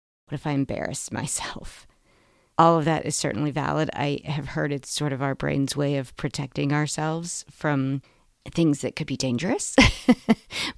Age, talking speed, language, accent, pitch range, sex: 40-59, 160 wpm, English, American, 140-165 Hz, female